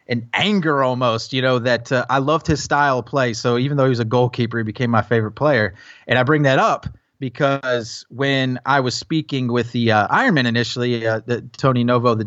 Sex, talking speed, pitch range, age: male, 220 wpm, 120-150 Hz, 30-49